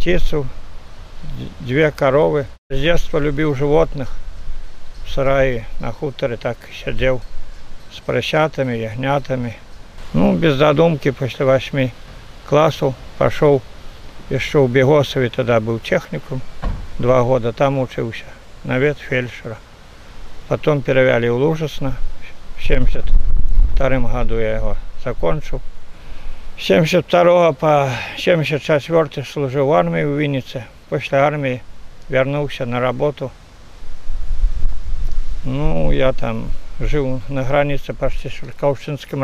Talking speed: 100 wpm